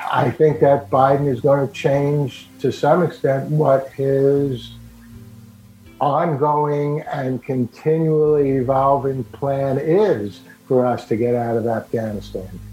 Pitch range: 120-145 Hz